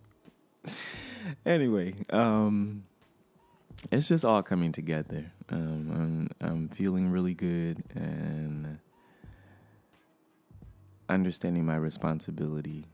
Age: 20-39